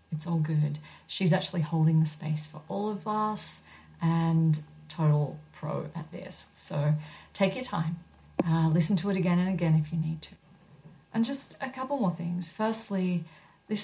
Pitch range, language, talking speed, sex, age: 155-180 Hz, English, 175 wpm, female, 40-59